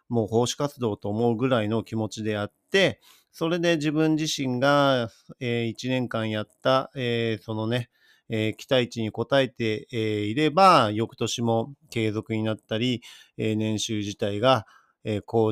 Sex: male